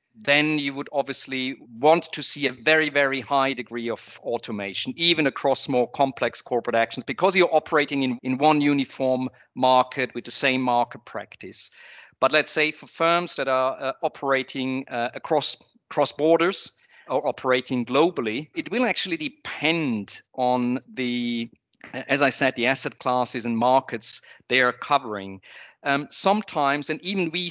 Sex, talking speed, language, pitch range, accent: male, 155 wpm, English, 125-155 Hz, German